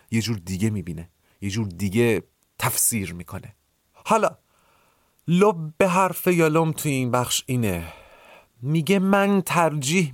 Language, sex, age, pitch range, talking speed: Persian, male, 40-59, 105-155 Hz, 125 wpm